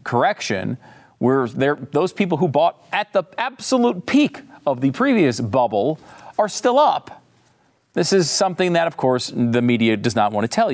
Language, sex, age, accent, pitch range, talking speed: English, male, 40-59, American, 115-170 Hz, 170 wpm